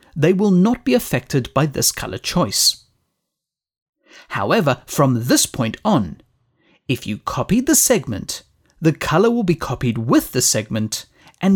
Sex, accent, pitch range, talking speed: male, British, 130-205 Hz, 145 wpm